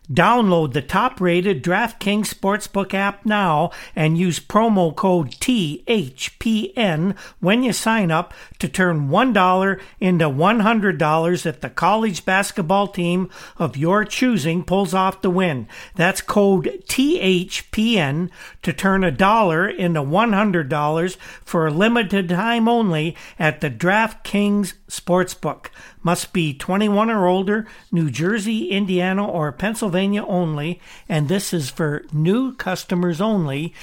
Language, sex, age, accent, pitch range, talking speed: English, male, 60-79, American, 165-210 Hz, 125 wpm